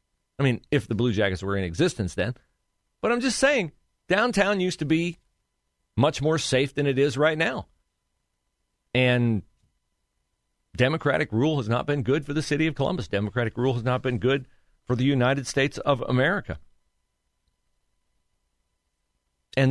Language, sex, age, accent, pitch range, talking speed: English, male, 40-59, American, 100-160 Hz, 155 wpm